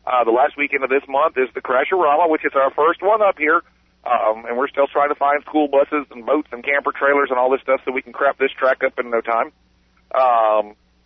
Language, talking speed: English, 255 wpm